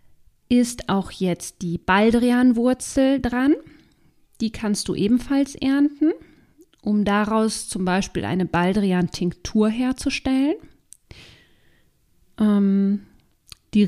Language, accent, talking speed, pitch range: German, German, 85 wpm, 195-245 Hz